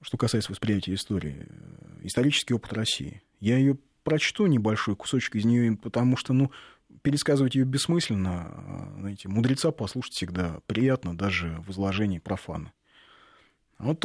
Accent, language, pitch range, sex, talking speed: native, Russian, 100-140 Hz, male, 130 wpm